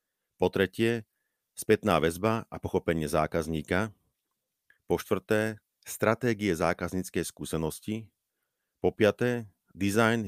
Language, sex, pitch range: Slovak, male, 85-105 Hz